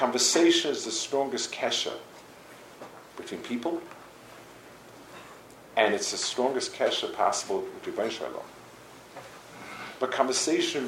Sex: male